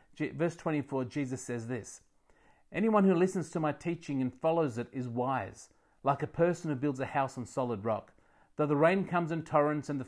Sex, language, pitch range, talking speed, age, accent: male, English, 120-155 Hz, 210 wpm, 40-59, Australian